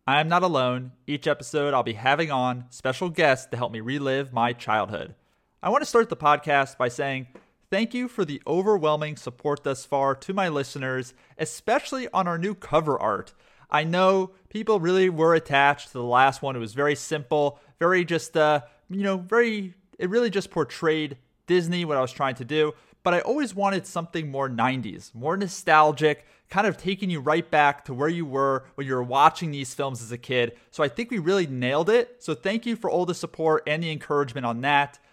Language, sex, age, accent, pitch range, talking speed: English, male, 30-49, American, 135-185 Hz, 205 wpm